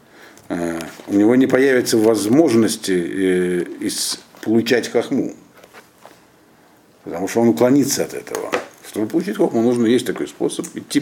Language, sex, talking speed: Russian, male, 115 wpm